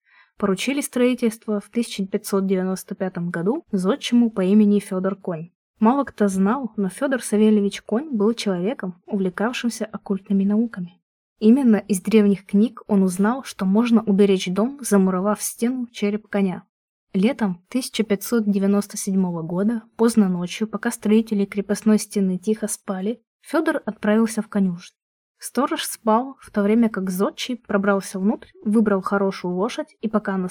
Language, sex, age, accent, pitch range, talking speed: Russian, female, 20-39, native, 195-230 Hz, 130 wpm